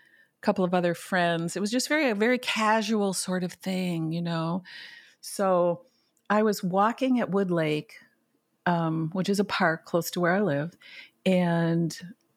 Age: 50-69